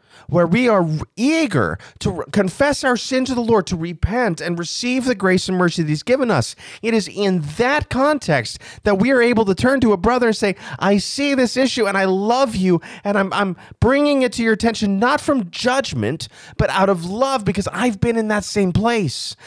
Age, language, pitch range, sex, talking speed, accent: 30-49, English, 175-240 Hz, male, 215 wpm, American